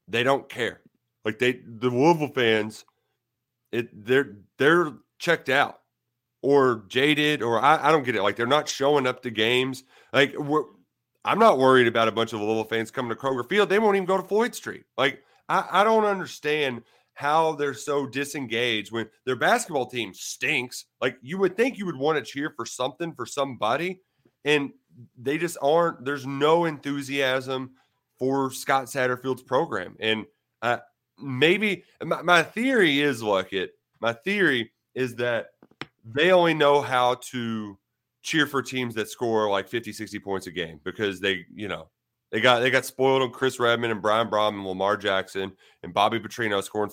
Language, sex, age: English, male, 30-49